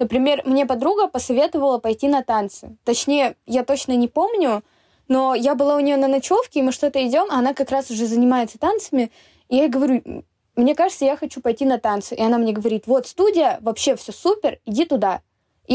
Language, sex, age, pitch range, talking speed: Russian, female, 10-29, 215-275 Hz, 200 wpm